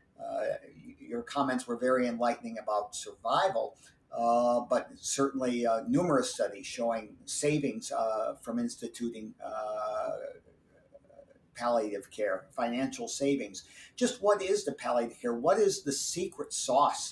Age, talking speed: 50-69, 125 wpm